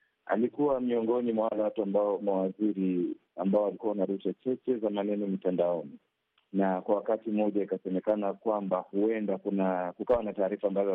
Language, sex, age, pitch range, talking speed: Swahili, male, 40-59, 95-110 Hz, 130 wpm